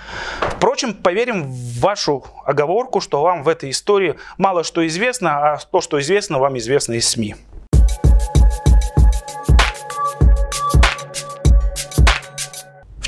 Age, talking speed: 30-49, 100 wpm